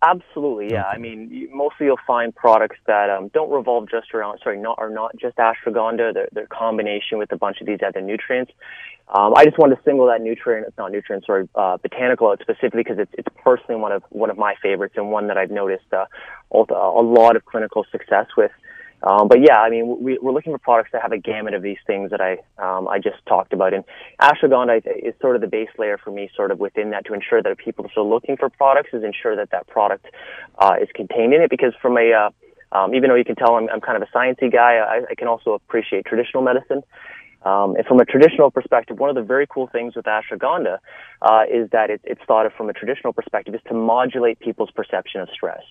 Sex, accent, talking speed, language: male, American, 240 wpm, English